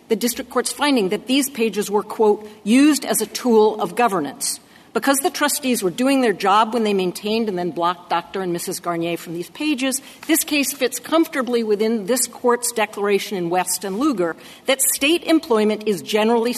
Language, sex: English, female